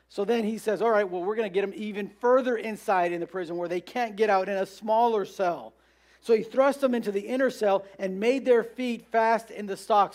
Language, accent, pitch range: English, American, 185-240 Hz